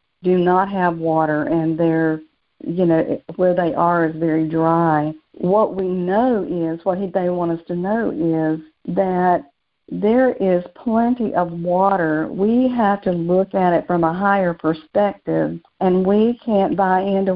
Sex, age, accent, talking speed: female, 50-69, American, 160 wpm